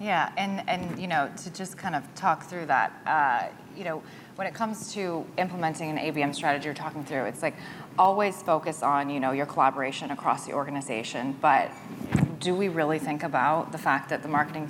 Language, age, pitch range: English, 20-39, 145-170 Hz